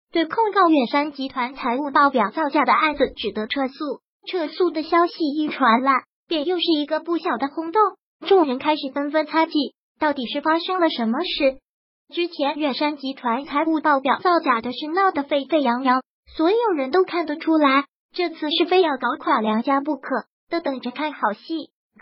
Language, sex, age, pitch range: Chinese, male, 20-39, 275-340 Hz